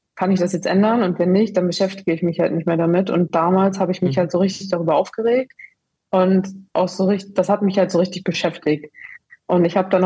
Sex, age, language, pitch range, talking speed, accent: female, 20-39, German, 175-195 Hz, 245 wpm, German